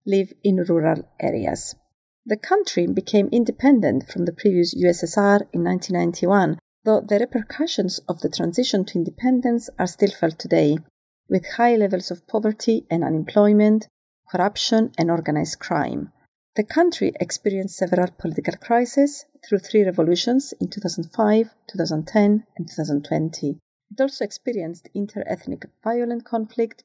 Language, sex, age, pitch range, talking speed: English, female, 40-59, 180-235 Hz, 125 wpm